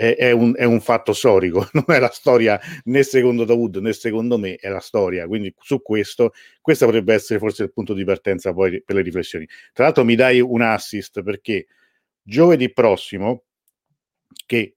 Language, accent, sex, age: Italian, native, male, 50-69